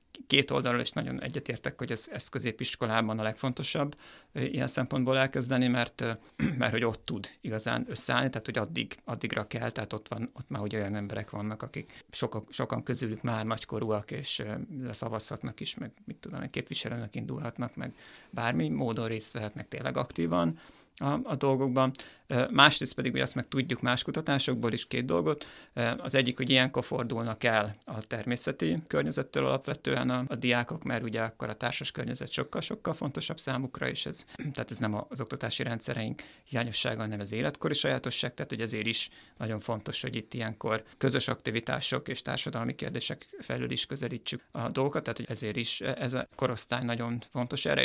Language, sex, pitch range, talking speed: Hungarian, male, 110-130 Hz, 165 wpm